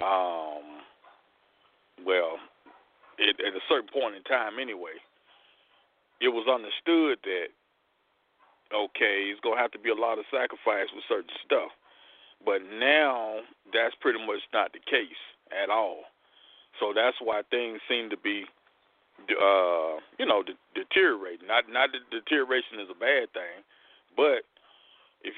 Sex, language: male, English